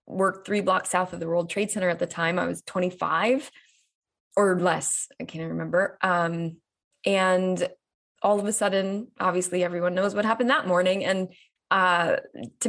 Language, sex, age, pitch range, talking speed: English, female, 20-39, 170-205 Hz, 170 wpm